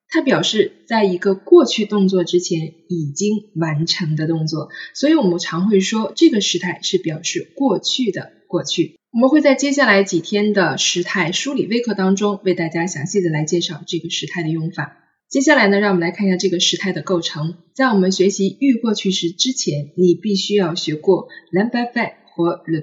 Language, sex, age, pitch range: Chinese, female, 20-39, 170-215 Hz